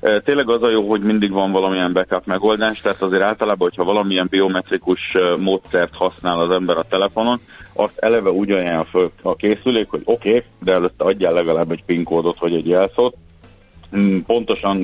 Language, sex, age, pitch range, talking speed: Hungarian, male, 50-69, 85-105 Hz, 160 wpm